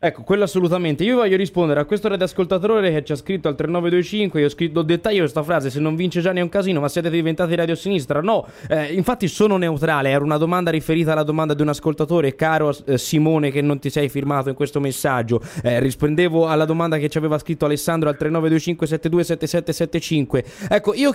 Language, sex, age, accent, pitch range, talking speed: Italian, male, 20-39, native, 150-200 Hz, 205 wpm